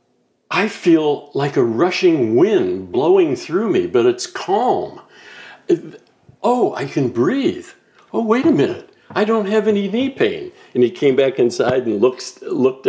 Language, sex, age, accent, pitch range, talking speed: English, male, 60-79, American, 240-390 Hz, 160 wpm